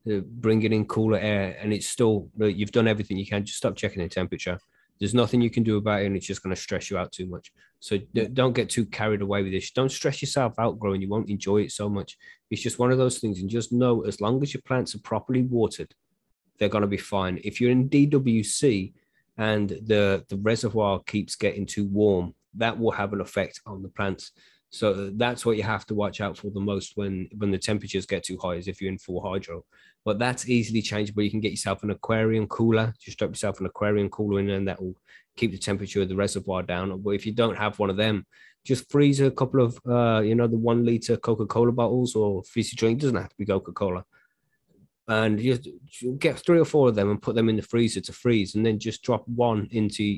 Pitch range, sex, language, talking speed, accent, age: 100-115 Hz, male, English, 240 wpm, British, 20-39